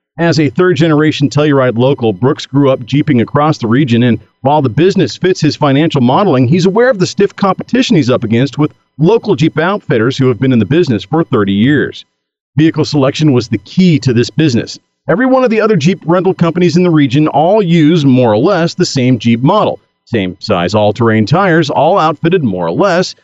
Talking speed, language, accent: 205 wpm, English, American